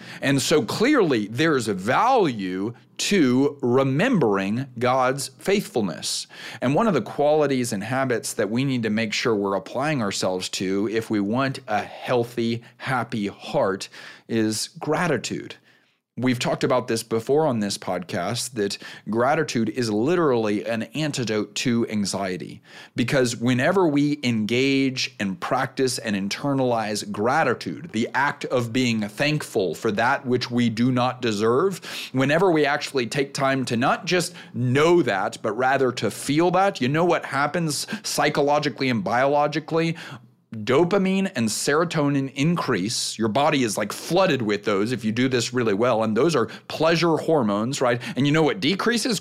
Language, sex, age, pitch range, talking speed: English, male, 40-59, 120-160 Hz, 150 wpm